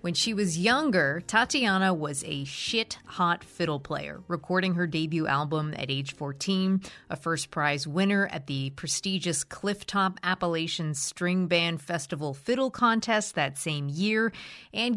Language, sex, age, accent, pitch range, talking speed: English, female, 30-49, American, 150-195 Hz, 135 wpm